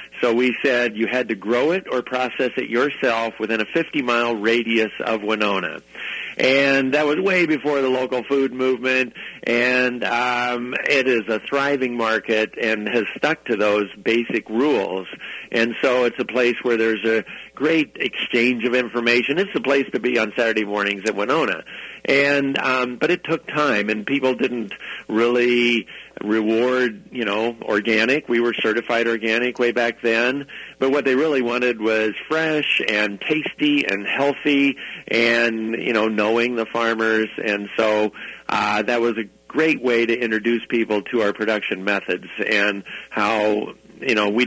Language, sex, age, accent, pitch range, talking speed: English, male, 50-69, American, 110-130 Hz, 165 wpm